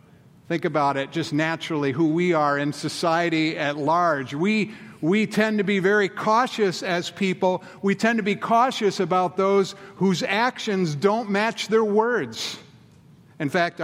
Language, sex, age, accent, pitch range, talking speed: English, male, 50-69, American, 145-190 Hz, 155 wpm